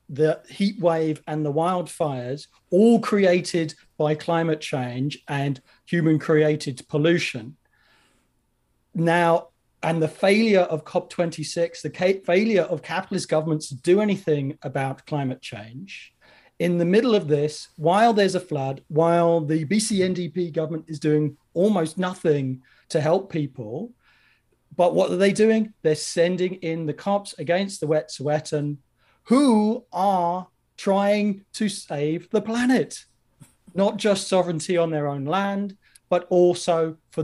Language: English